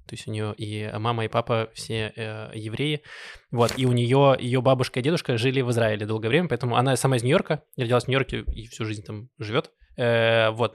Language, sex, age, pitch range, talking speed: Russian, male, 20-39, 115-130 Hz, 225 wpm